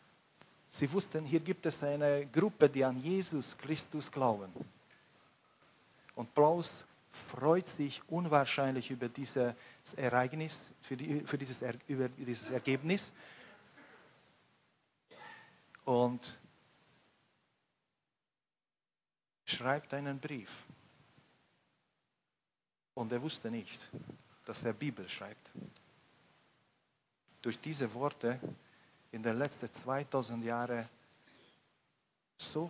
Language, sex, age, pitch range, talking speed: German, male, 40-59, 120-145 Hz, 80 wpm